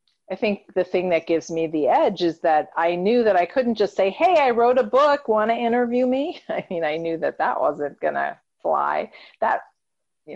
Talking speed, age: 225 wpm, 50-69